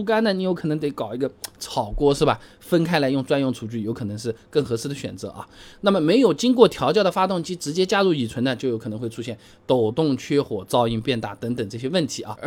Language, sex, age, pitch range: Chinese, male, 20-39, 120-185 Hz